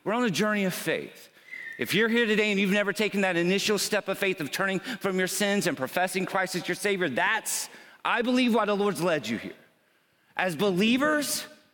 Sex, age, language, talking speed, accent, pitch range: male, 40-59, English, 210 wpm, American, 150-220 Hz